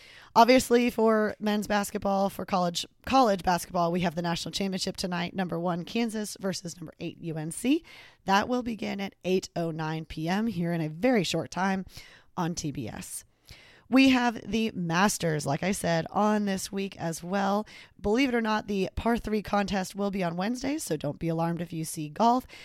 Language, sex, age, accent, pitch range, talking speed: English, female, 20-39, American, 170-215 Hz, 180 wpm